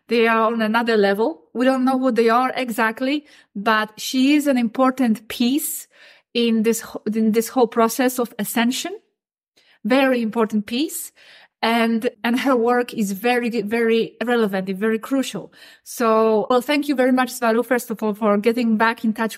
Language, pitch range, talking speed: English, 220-275 Hz, 165 wpm